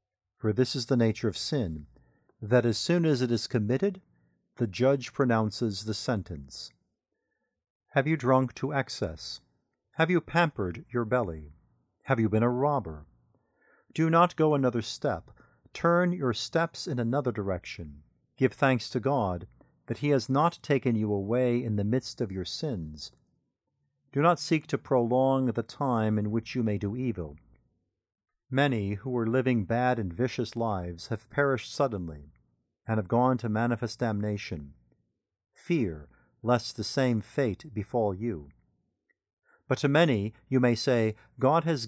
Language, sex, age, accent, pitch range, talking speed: English, male, 50-69, American, 105-140 Hz, 155 wpm